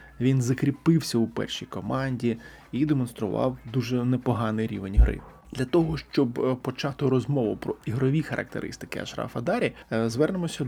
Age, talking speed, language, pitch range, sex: 20-39, 125 wpm, Ukrainian, 125-150 Hz, male